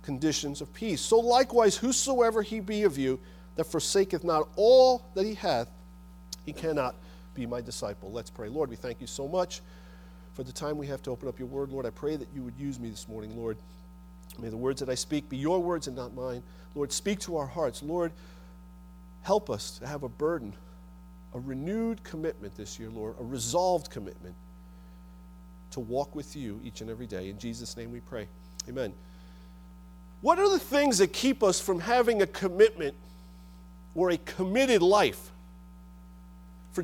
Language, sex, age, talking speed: English, male, 40-59, 185 wpm